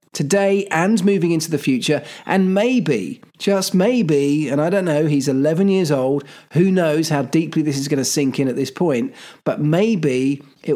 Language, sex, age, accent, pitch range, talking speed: English, male, 40-59, British, 155-215 Hz, 190 wpm